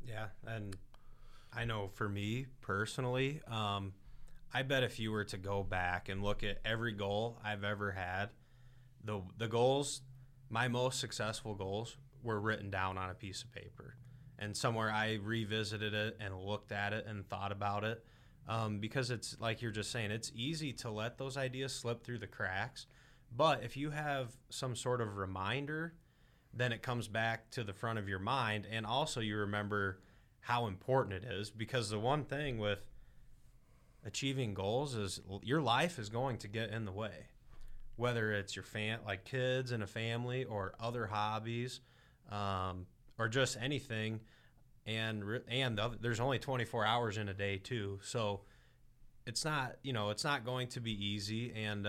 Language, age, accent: English, 20-39, American